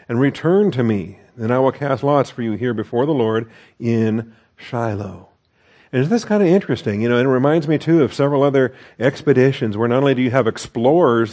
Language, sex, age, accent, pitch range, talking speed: English, male, 50-69, American, 110-130 Hz, 215 wpm